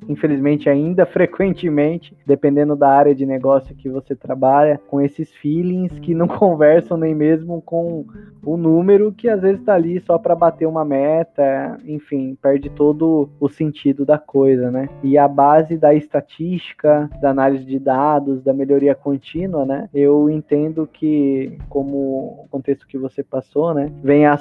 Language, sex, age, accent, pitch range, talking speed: Portuguese, male, 20-39, Brazilian, 140-160 Hz, 160 wpm